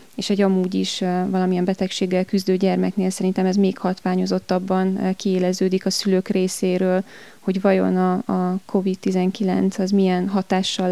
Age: 20-39